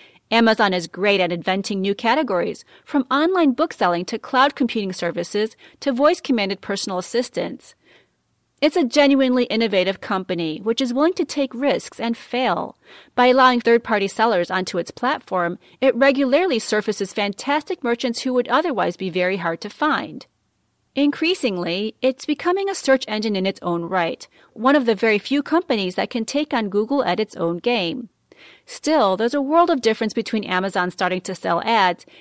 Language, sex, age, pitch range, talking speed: English, female, 30-49, 190-270 Hz, 165 wpm